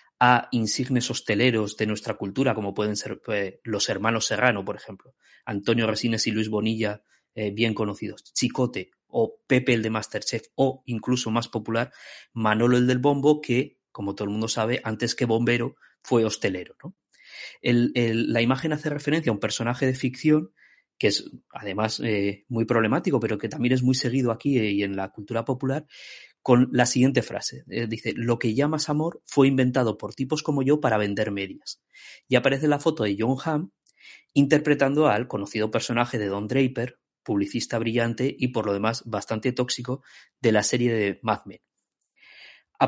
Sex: male